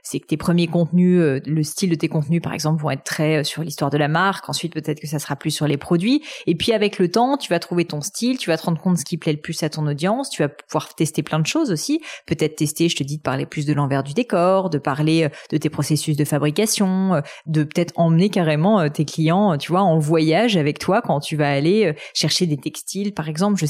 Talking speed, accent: 260 wpm, French